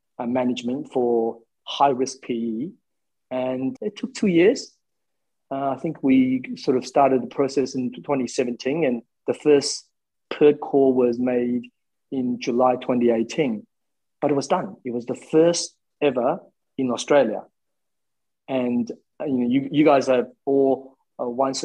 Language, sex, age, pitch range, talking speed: English, male, 30-49, 125-160 Hz, 145 wpm